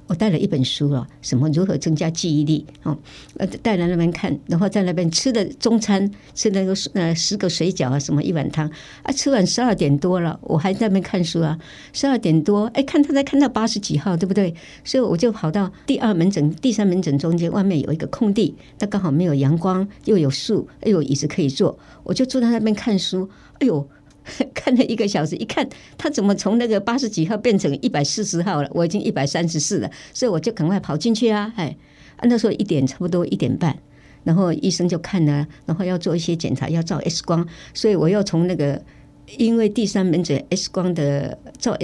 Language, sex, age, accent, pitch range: Chinese, male, 60-79, American, 155-205 Hz